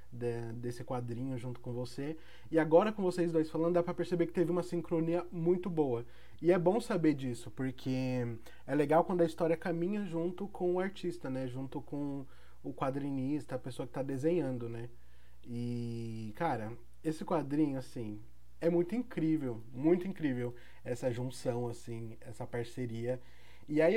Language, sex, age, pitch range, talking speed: Portuguese, male, 20-39, 125-175 Hz, 165 wpm